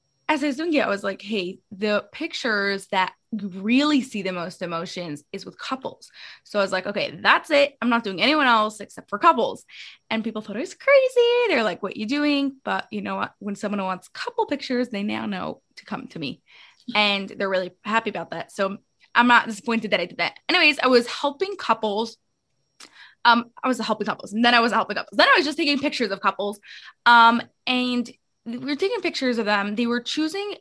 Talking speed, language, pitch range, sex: 220 wpm, English, 205-270 Hz, female